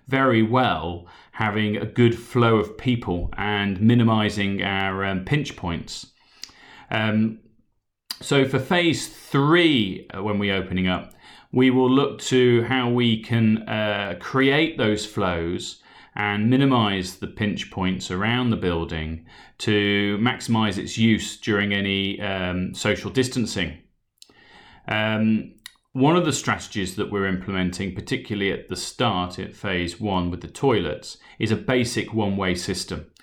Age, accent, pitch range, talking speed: 30-49, British, 95-115 Hz, 135 wpm